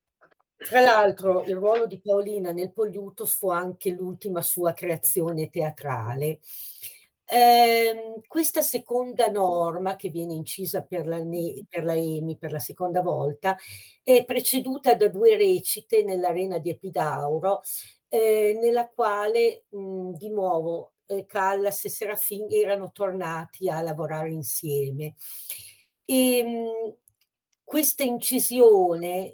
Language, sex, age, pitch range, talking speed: Italian, female, 50-69, 170-215 Hz, 115 wpm